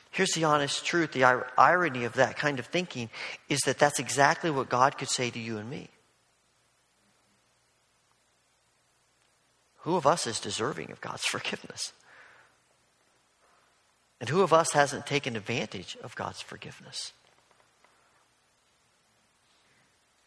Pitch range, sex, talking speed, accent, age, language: 120-150 Hz, male, 120 wpm, American, 50-69, English